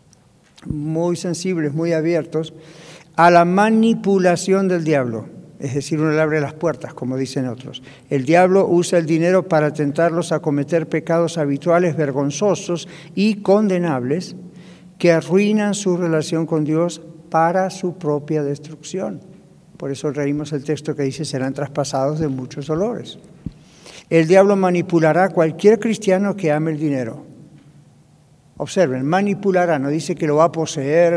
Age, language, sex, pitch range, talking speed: 60-79, Spanish, male, 150-180 Hz, 140 wpm